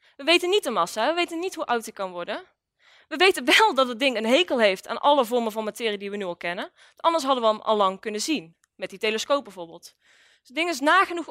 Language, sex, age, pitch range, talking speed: Dutch, female, 20-39, 230-335 Hz, 255 wpm